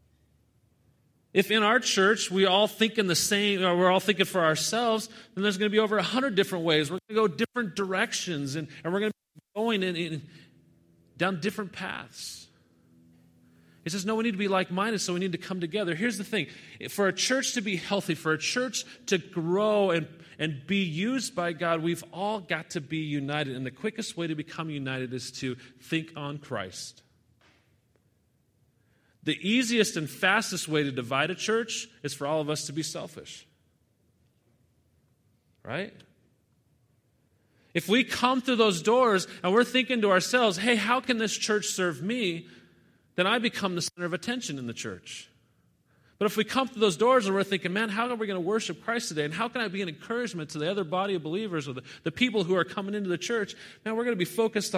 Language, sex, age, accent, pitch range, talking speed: English, male, 40-59, American, 145-215 Hz, 205 wpm